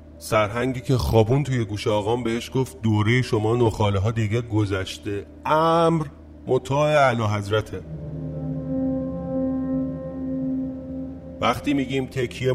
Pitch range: 85-120 Hz